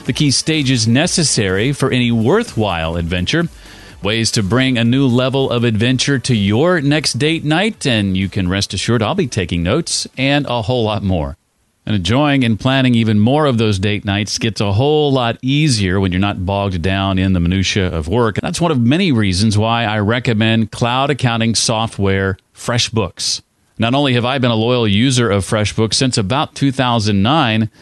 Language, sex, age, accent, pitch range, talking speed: English, male, 40-59, American, 100-130 Hz, 185 wpm